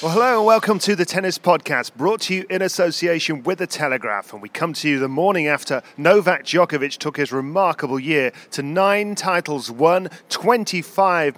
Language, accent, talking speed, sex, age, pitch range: English, British, 185 wpm, male, 40-59, 135-185 Hz